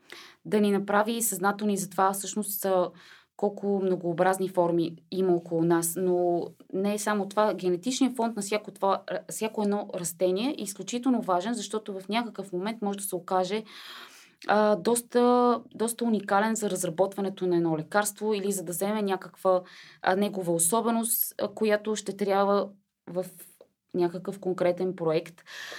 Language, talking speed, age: Bulgarian, 145 wpm, 20-39